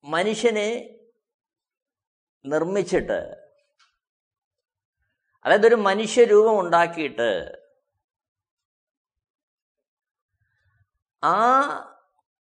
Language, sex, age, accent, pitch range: Malayalam, male, 50-69, native, 170-255 Hz